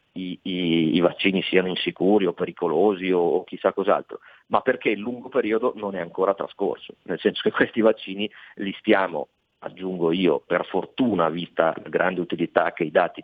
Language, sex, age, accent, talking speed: Italian, male, 40-59, native, 170 wpm